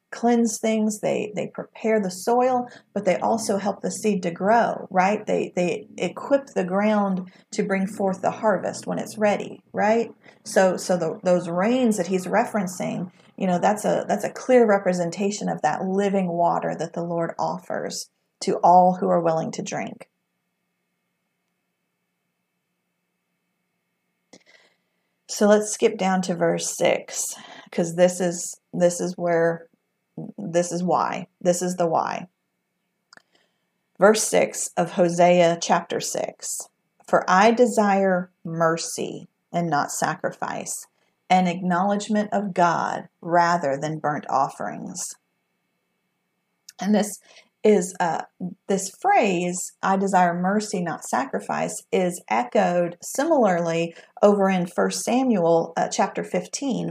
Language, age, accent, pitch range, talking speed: English, 40-59, American, 175-210 Hz, 130 wpm